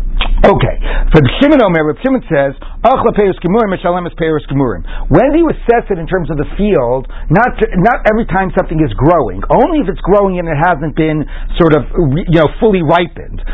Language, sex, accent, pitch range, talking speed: English, male, American, 150-200 Hz, 165 wpm